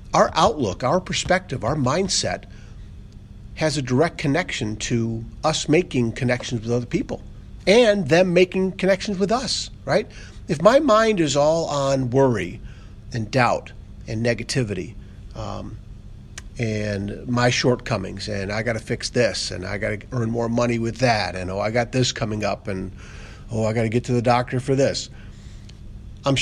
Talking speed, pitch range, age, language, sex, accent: 165 wpm, 105-125 Hz, 50-69, English, male, American